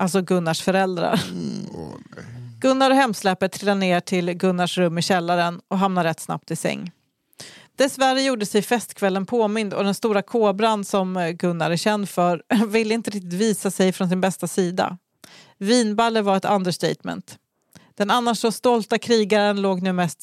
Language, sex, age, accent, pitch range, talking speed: English, female, 40-59, Swedish, 180-225 Hz, 160 wpm